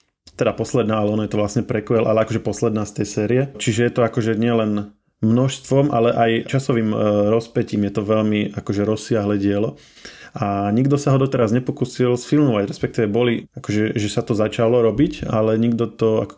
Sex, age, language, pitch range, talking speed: male, 20-39, Slovak, 105-120 Hz, 180 wpm